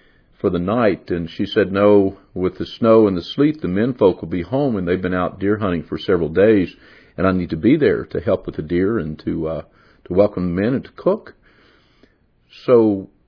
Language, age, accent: English, 50-69, American